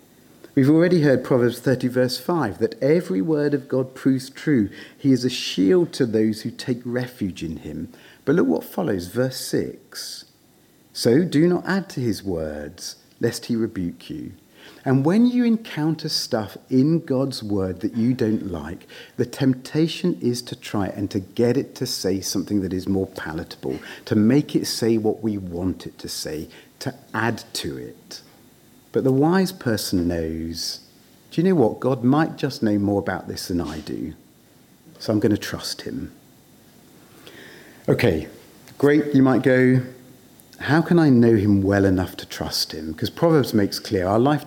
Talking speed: 175 wpm